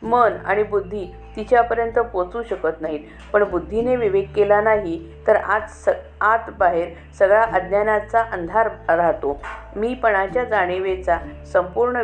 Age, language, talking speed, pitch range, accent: 50-69, Marathi, 115 wpm, 175-225 Hz, native